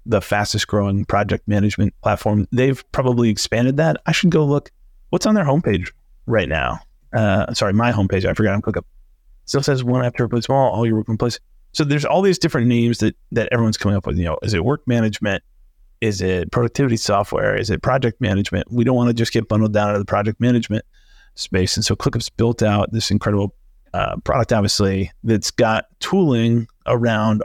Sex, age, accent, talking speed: male, 30-49, American, 205 wpm